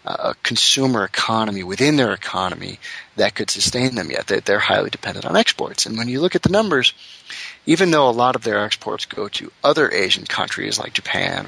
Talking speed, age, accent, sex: 195 wpm, 30-49, American, male